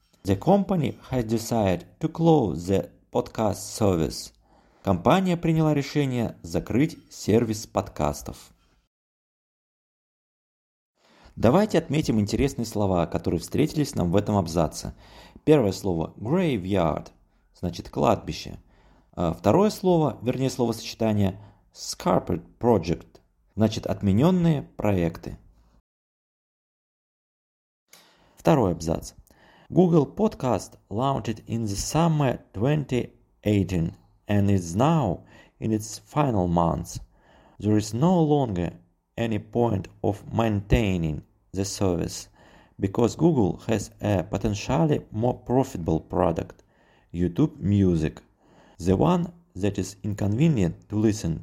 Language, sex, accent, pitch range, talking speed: Russian, male, native, 95-125 Hz, 95 wpm